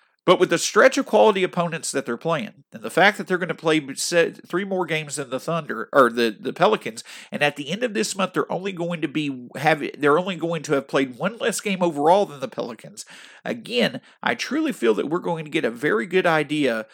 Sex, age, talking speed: male, 50-69, 235 wpm